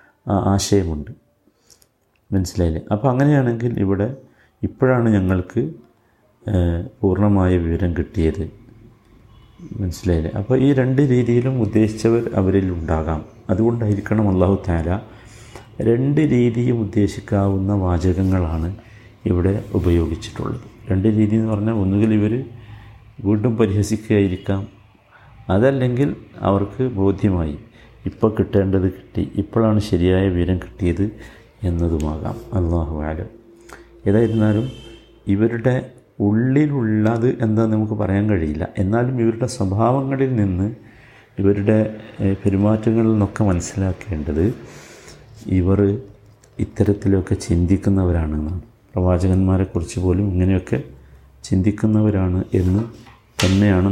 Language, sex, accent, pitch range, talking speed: Malayalam, male, native, 95-115 Hz, 80 wpm